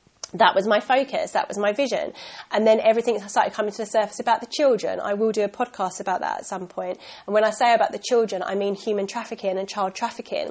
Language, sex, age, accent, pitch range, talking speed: English, female, 30-49, British, 195-235 Hz, 245 wpm